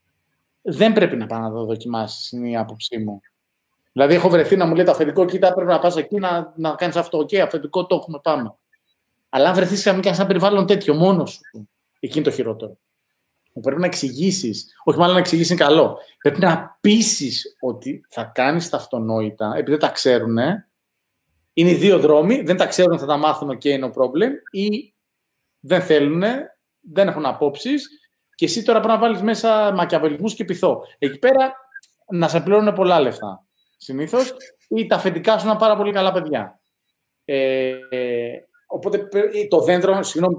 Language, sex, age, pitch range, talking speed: Greek, male, 30-49, 125-190 Hz, 175 wpm